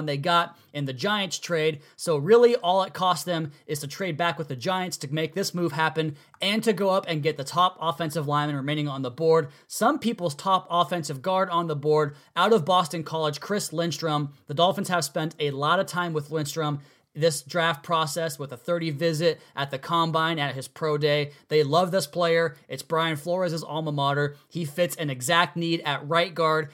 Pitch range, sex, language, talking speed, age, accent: 145-170 Hz, male, English, 210 wpm, 20-39, American